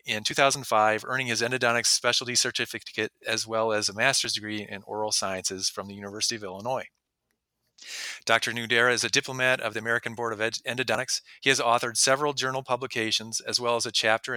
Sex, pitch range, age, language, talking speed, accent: male, 105-125 Hz, 40-59, English, 180 wpm, American